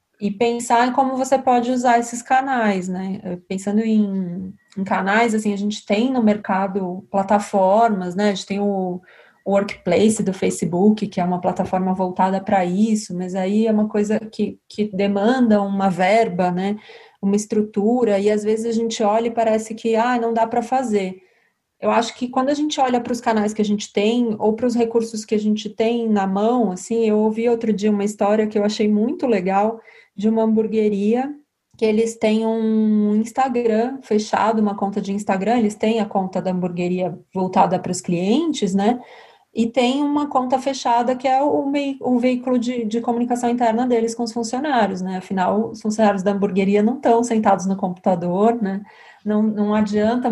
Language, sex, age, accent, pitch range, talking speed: Portuguese, female, 20-39, Brazilian, 200-235 Hz, 185 wpm